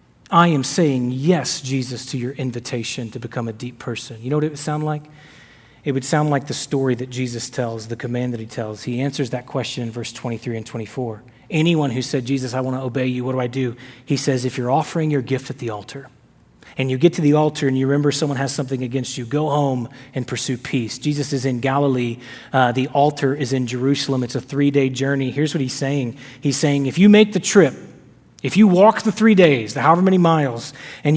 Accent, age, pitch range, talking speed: American, 30-49, 125-155 Hz, 230 wpm